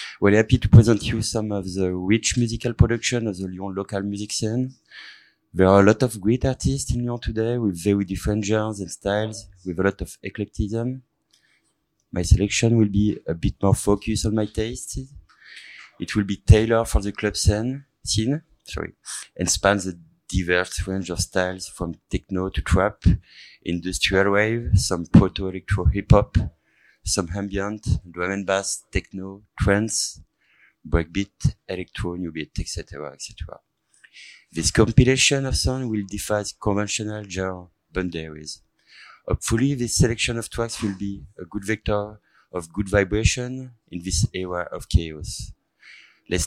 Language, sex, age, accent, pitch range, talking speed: French, male, 30-49, French, 95-115 Hz, 150 wpm